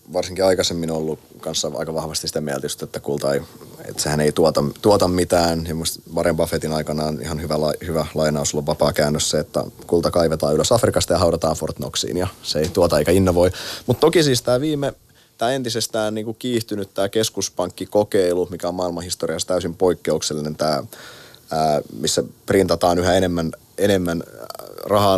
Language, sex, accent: Finnish, male, native